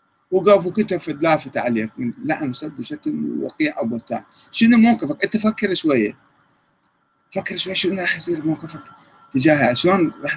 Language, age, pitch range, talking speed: Arabic, 40-59, 115-165 Hz, 140 wpm